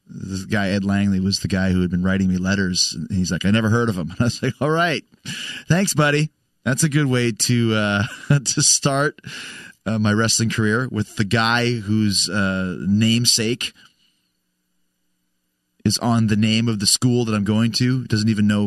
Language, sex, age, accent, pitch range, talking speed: English, male, 30-49, American, 105-130 Hz, 195 wpm